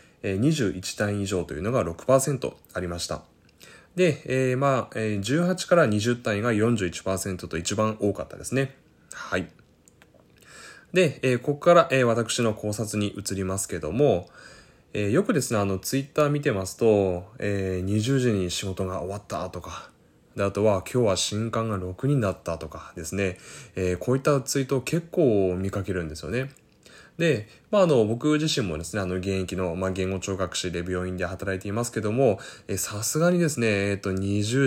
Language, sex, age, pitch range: Japanese, male, 20-39, 95-130 Hz